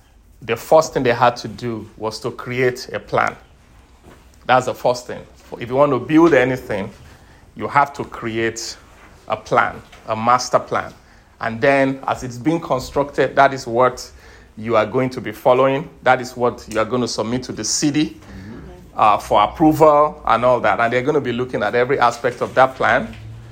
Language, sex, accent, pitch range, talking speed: English, male, Nigerian, 110-140 Hz, 190 wpm